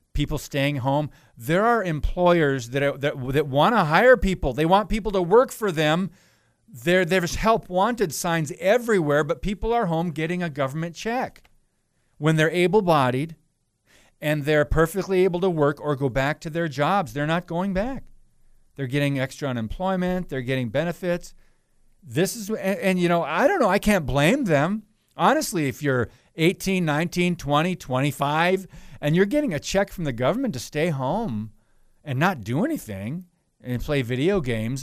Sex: male